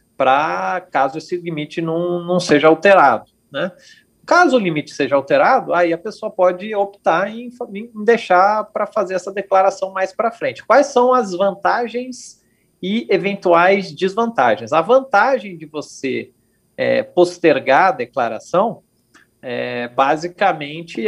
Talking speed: 130 wpm